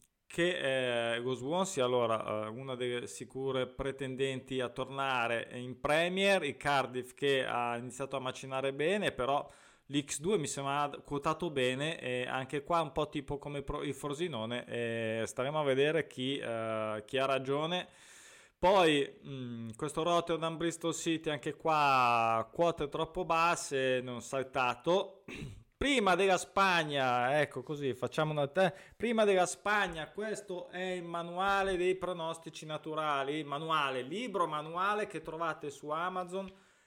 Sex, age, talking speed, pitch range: male, 20-39, 135 wpm, 135-180 Hz